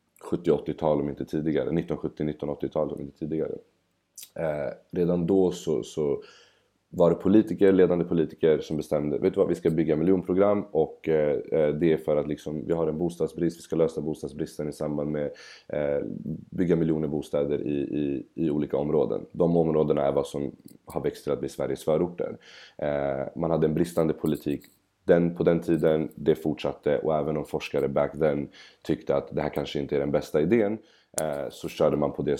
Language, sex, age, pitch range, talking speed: Swedish, male, 30-49, 75-85 Hz, 185 wpm